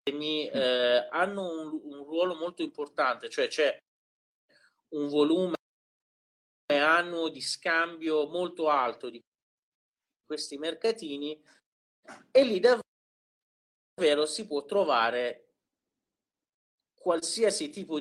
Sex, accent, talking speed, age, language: male, native, 95 wpm, 40-59, Italian